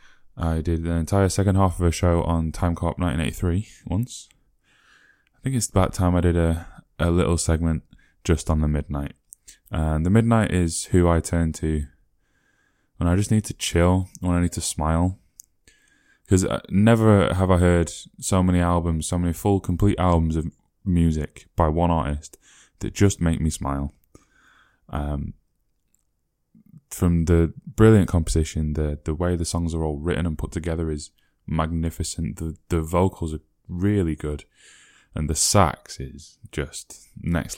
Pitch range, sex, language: 80-95 Hz, male, English